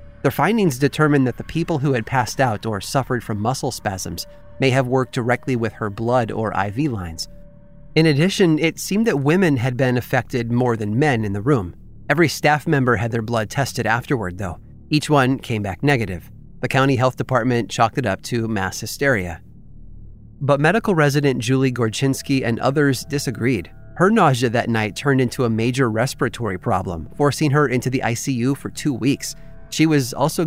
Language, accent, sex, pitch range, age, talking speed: English, American, male, 110-140 Hz, 30-49, 185 wpm